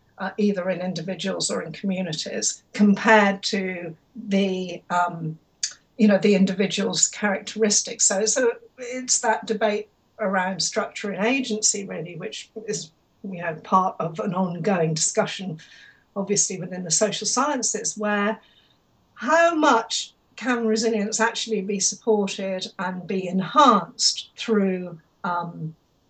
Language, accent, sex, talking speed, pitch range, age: English, British, female, 110 wpm, 180-220 Hz, 50-69